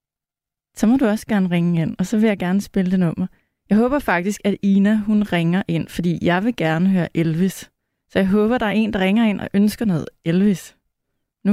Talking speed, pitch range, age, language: 225 wpm, 195-230 Hz, 30-49, Danish